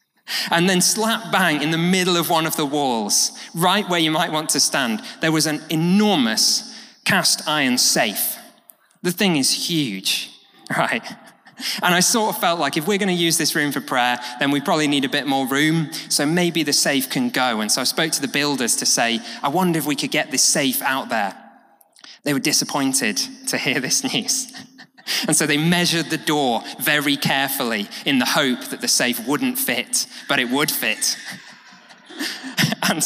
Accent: British